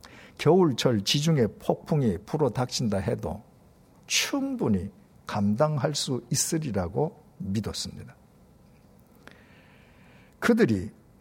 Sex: male